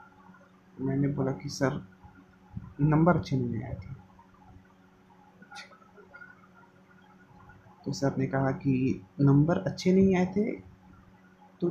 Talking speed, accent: 100 wpm, native